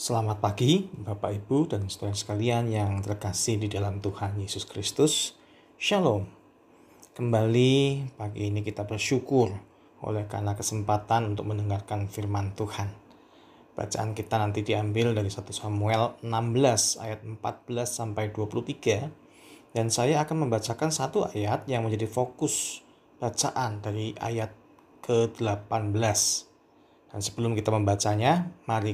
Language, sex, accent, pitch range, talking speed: Indonesian, male, native, 105-120 Hz, 120 wpm